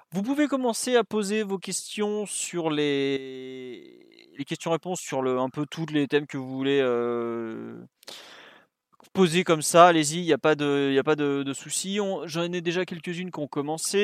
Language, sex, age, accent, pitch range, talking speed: French, male, 30-49, French, 135-175 Hz, 190 wpm